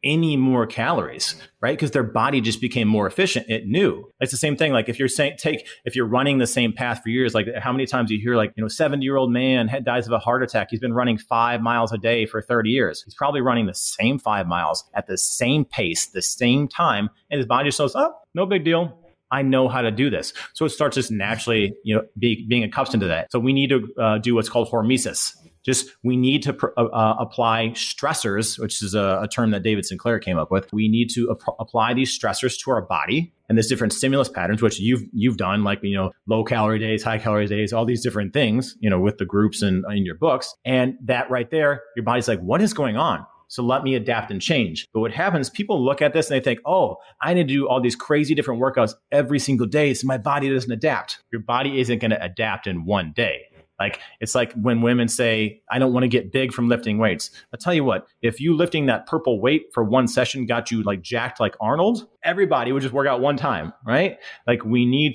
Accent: American